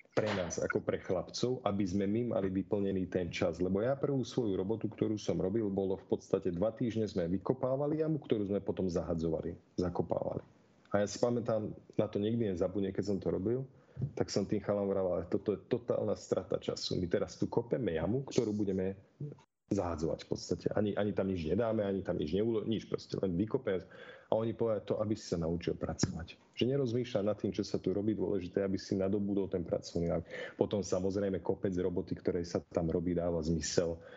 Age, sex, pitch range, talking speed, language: 40-59, male, 95-110 Hz, 195 wpm, Slovak